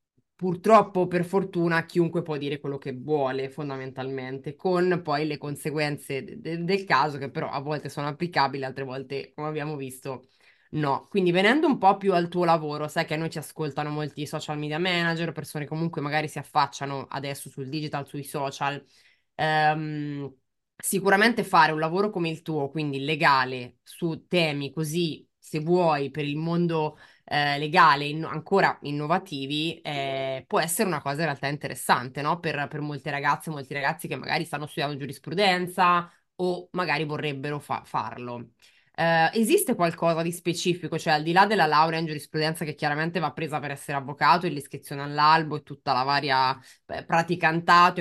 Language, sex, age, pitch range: Italian, female, 20-39, 140-170 Hz